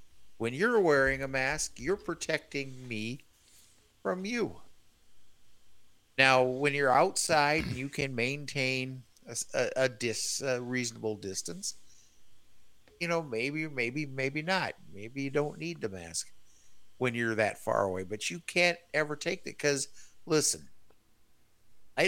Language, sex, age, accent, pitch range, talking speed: English, male, 50-69, American, 110-140 Hz, 135 wpm